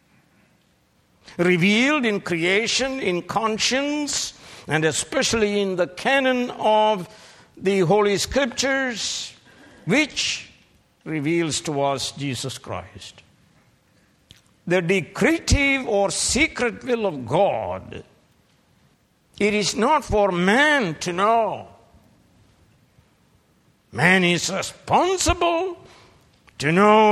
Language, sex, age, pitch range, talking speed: English, male, 60-79, 145-185 Hz, 85 wpm